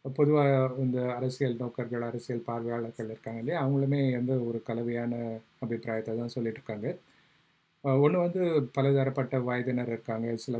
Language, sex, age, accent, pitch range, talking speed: Tamil, male, 30-49, native, 115-130 Hz, 120 wpm